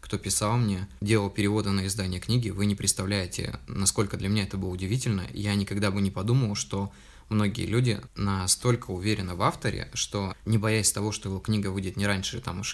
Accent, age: native, 20-39